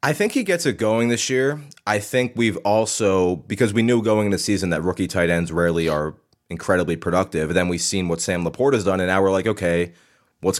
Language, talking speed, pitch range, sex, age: English, 230 wpm, 90-115 Hz, male, 20-39